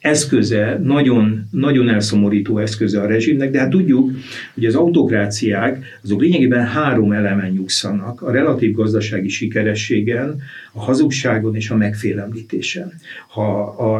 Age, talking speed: 50-69, 125 wpm